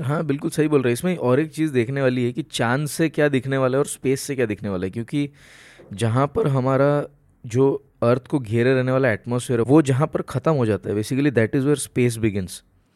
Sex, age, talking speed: male, 20-39, 230 wpm